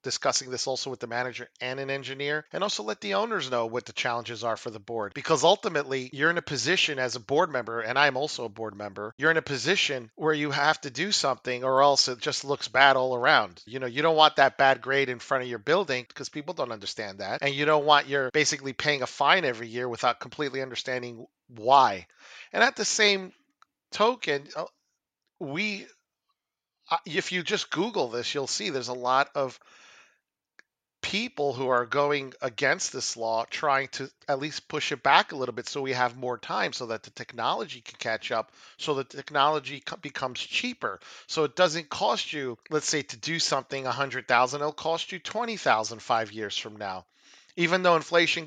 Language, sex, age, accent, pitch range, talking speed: English, male, 40-59, American, 125-155 Hz, 205 wpm